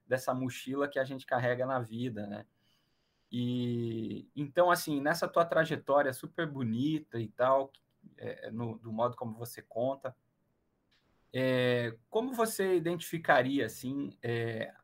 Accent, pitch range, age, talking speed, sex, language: Brazilian, 120-155 Hz, 20-39, 130 wpm, male, Portuguese